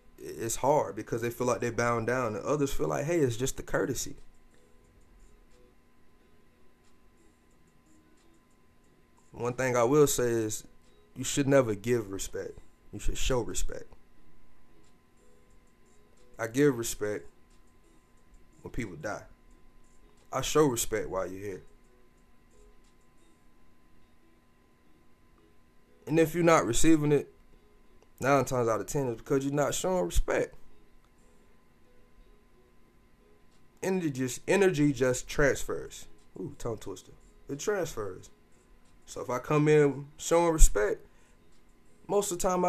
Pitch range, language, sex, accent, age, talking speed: 80-130 Hz, English, male, American, 20-39, 115 wpm